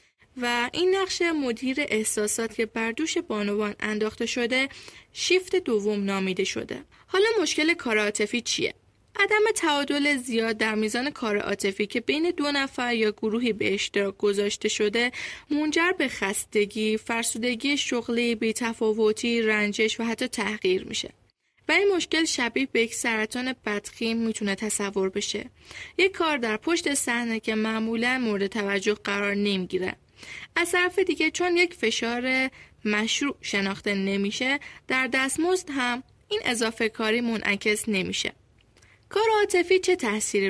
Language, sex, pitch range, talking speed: Persian, female, 210-285 Hz, 130 wpm